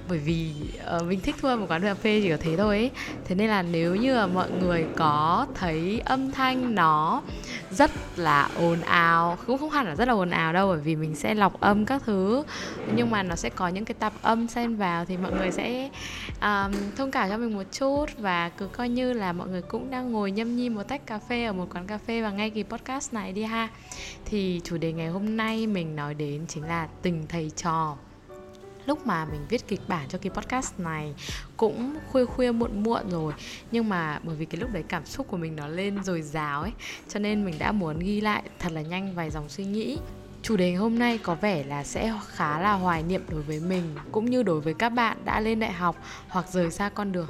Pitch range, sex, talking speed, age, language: 165-225 Hz, female, 240 wpm, 10-29, Vietnamese